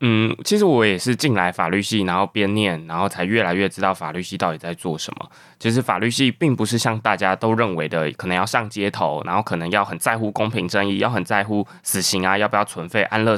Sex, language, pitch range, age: male, Chinese, 95-115 Hz, 20-39